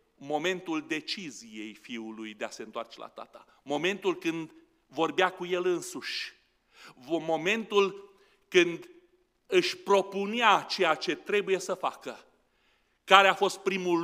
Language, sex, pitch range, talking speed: Romanian, male, 180-275 Hz, 120 wpm